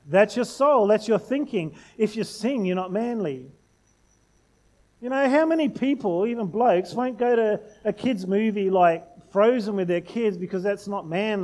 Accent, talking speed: Australian, 180 wpm